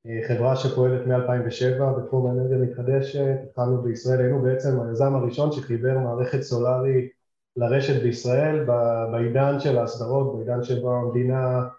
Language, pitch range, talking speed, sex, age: Hebrew, 125-140 Hz, 115 wpm, male, 20-39